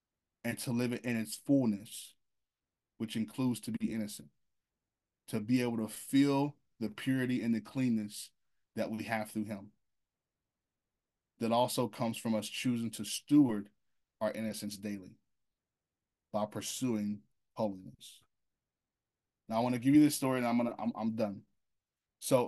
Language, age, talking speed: English, 20-39, 150 wpm